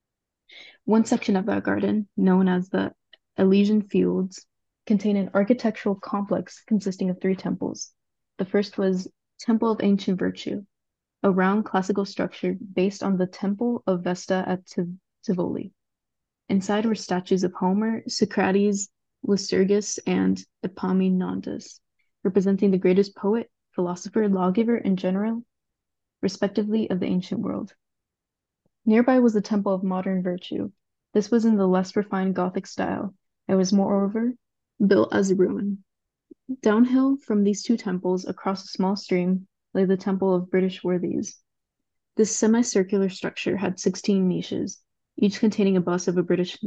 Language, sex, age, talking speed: English, female, 20-39, 140 wpm